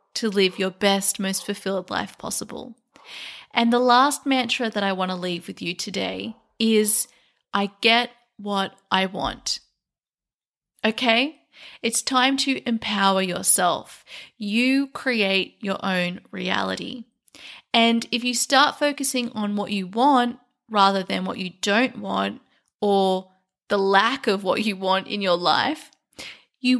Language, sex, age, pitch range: English, female, 30-49, 190-245 Hz